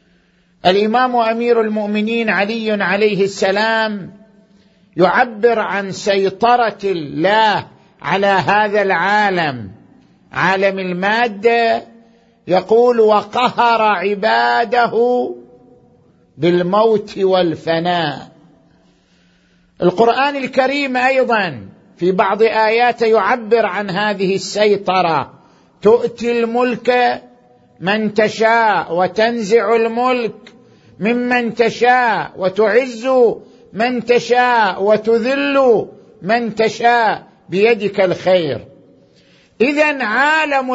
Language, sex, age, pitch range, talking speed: Arabic, male, 50-69, 195-240 Hz, 70 wpm